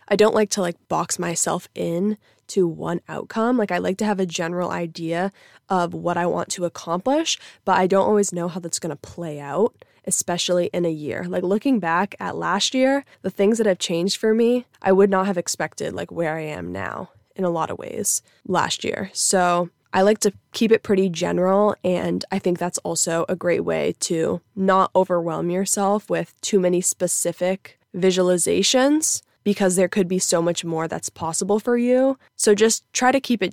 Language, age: English, 20-39